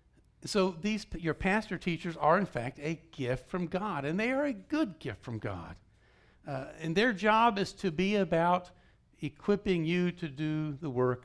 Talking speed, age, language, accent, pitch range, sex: 180 wpm, 60-79, English, American, 120-170 Hz, male